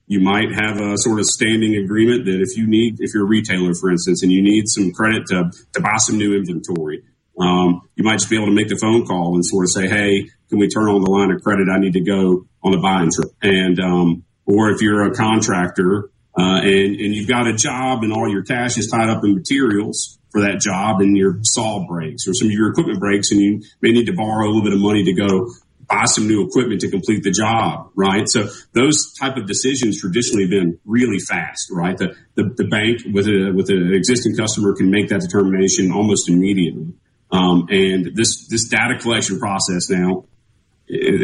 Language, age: English, 40-59